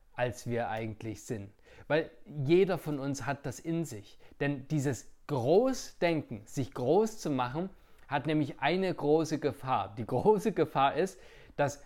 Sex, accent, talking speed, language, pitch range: male, German, 145 wpm, German, 125-155 Hz